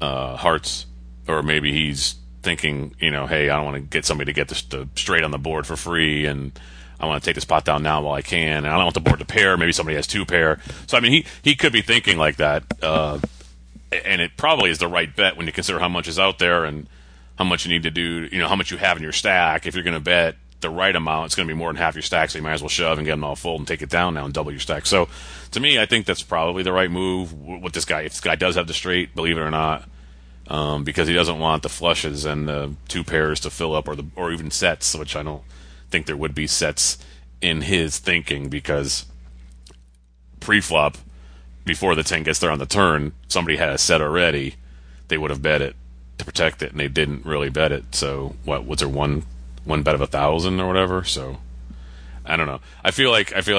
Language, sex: English, male